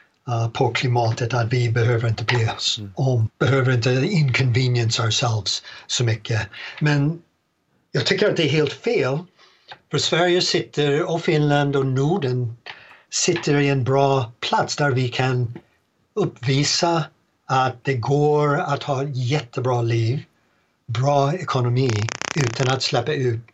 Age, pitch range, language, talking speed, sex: 60-79, 120-145 Hz, Swedish, 130 wpm, male